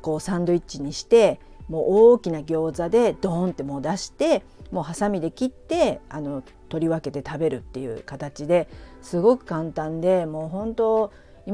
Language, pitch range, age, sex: Japanese, 155-200 Hz, 50-69, female